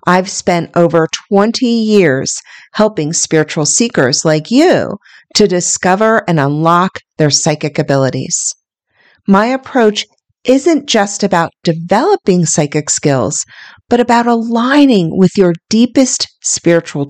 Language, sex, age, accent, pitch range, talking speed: English, female, 40-59, American, 160-220 Hz, 110 wpm